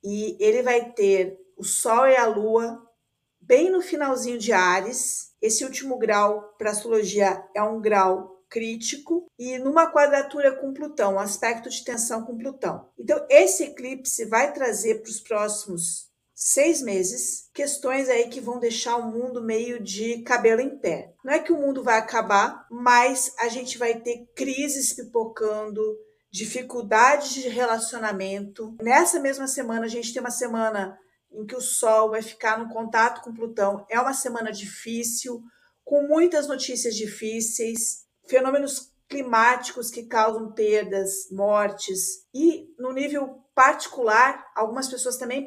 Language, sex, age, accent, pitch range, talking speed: Portuguese, female, 50-69, Brazilian, 220-270 Hz, 150 wpm